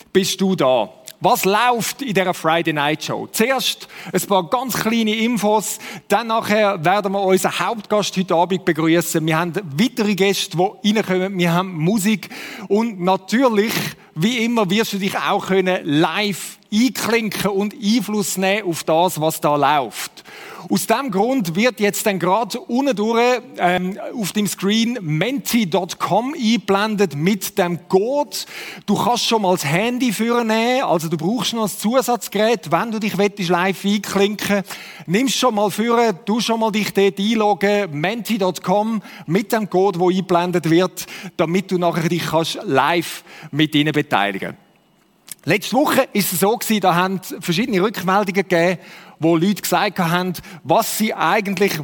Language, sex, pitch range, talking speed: German, male, 180-225 Hz, 155 wpm